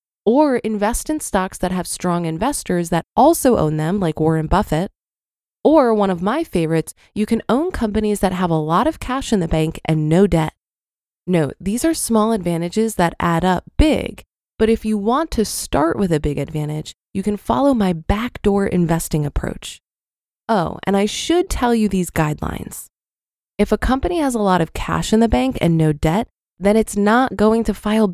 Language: English